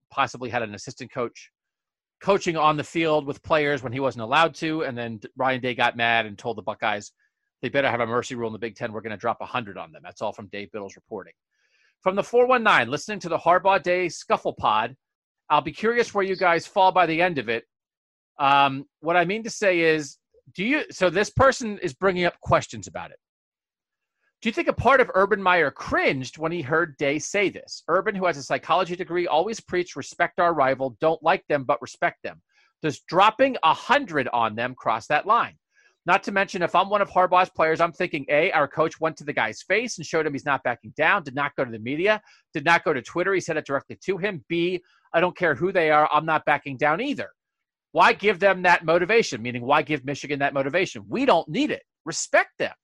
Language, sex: English, male